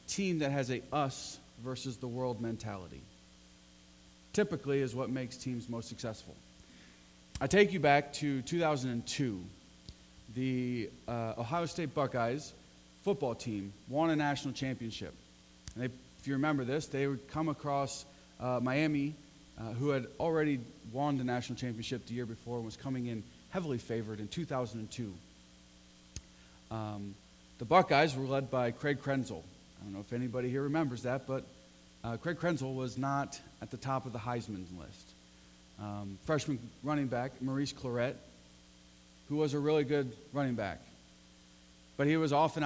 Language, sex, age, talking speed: English, male, 30-49, 155 wpm